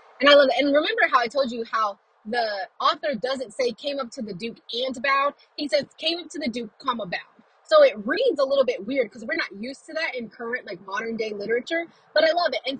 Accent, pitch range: American, 215-295 Hz